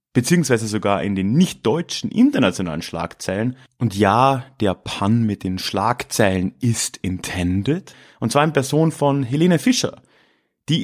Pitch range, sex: 95-130 Hz, male